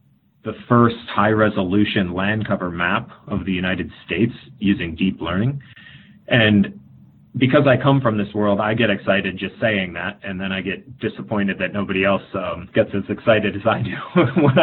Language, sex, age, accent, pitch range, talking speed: English, male, 30-49, American, 95-115 Hz, 170 wpm